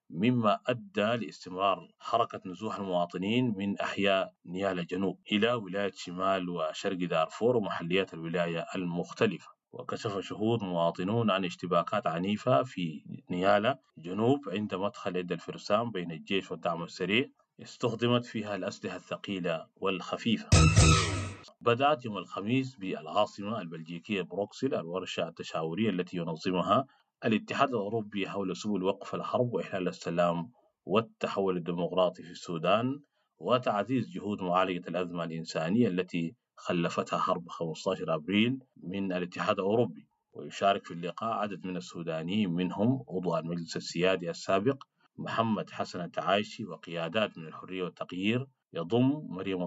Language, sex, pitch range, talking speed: English, male, 90-110 Hz, 115 wpm